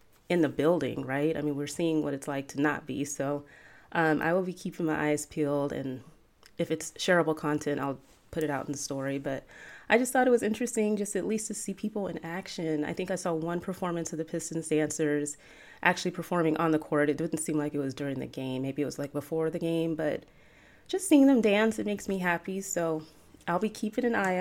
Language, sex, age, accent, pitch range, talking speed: English, female, 30-49, American, 145-185 Hz, 235 wpm